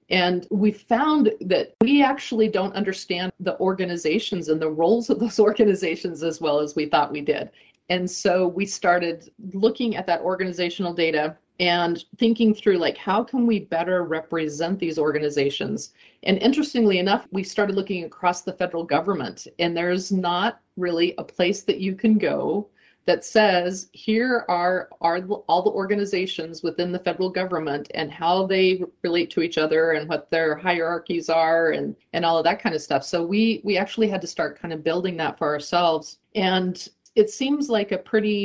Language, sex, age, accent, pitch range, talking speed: English, female, 40-59, American, 170-210 Hz, 180 wpm